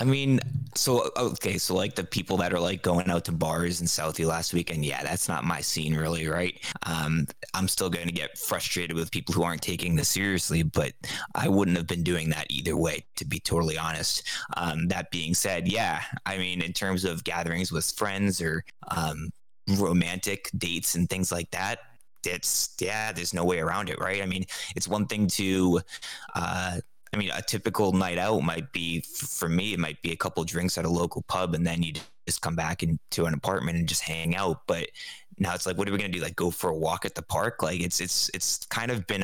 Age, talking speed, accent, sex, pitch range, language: 20-39, 225 wpm, American, male, 85-95 Hz, English